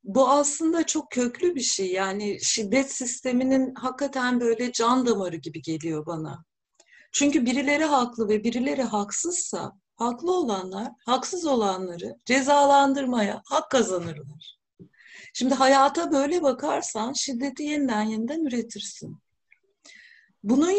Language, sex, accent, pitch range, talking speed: Turkish, female, native, 210-290 Hz, 110 wpm